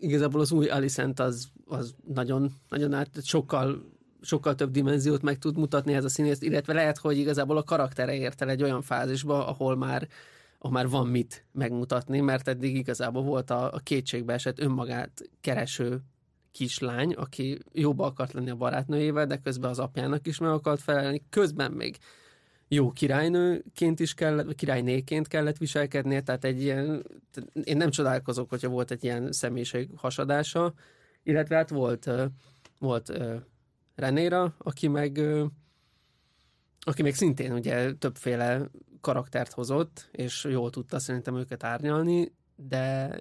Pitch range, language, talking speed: 125-150 Hz, Hungarian, 145 wpm